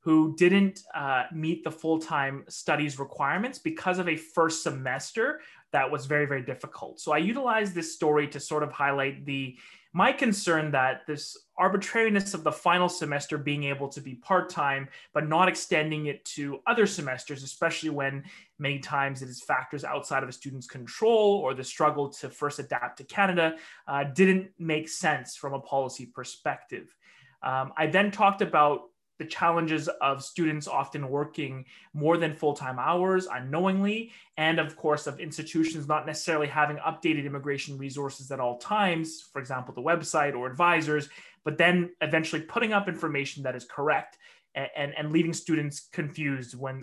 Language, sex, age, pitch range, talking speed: English, male, 20-39, 140-175 Hz, 165 wpm